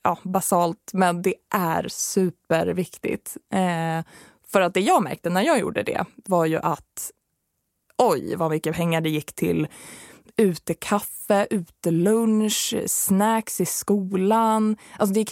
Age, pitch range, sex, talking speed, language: 20-39, 170-220 Hz, female, 140 wpm, Swedish